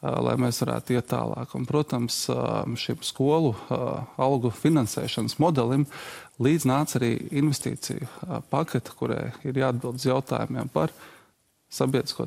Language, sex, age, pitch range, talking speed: English, male, 20-39, 120-145 Hz, 120 wpm